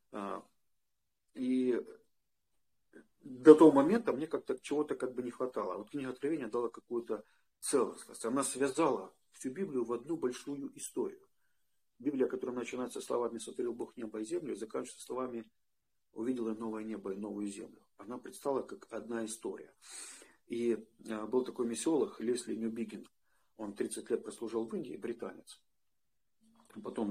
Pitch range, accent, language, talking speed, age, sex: 115-165 Hz, native, Russian, 135 wpm, 40-59, male